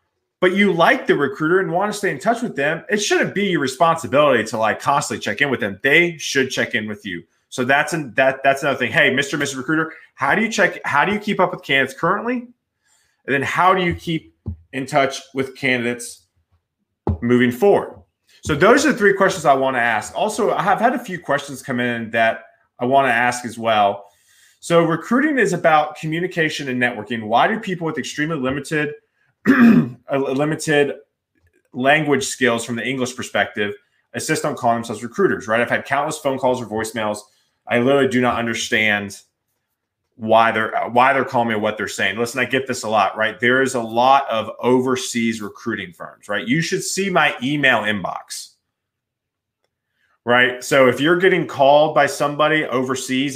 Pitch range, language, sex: 120-165 Hz, English, male